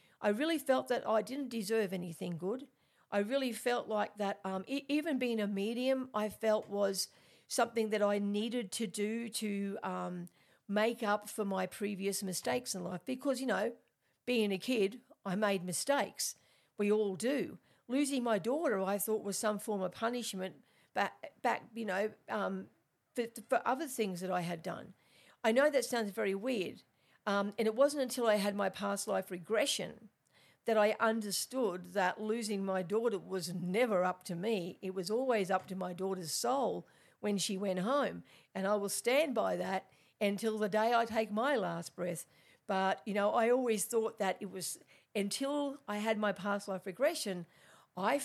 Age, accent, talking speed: 50-69, Australian, 180 wpm